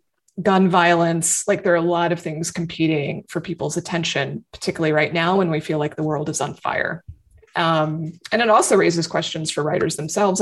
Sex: female